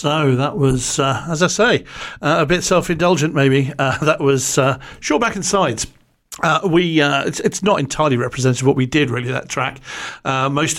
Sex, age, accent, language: male, 50-69, British, English